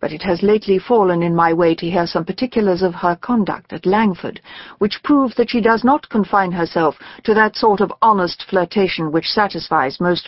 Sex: female